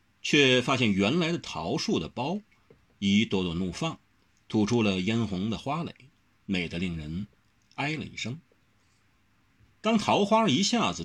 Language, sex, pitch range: Chinese, male, 95-130 Hz